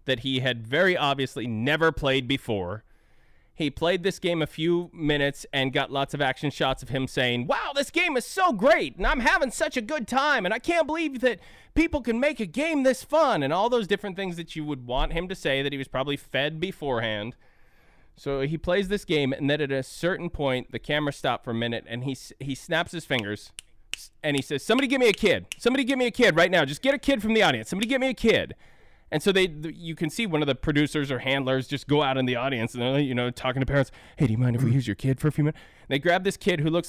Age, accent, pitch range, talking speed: 30-49, American, 135-195 Hz, 265 wpm